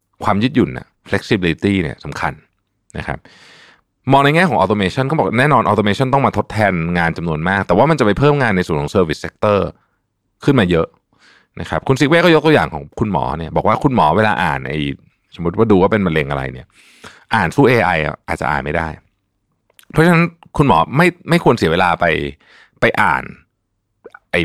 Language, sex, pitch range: Thai, male, 90-140 Hz